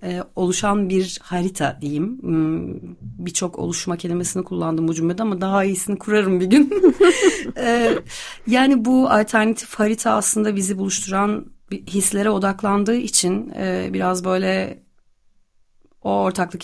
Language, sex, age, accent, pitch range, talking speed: Turkish, female, 30-49, native, 160-205 Hz, 110 wpm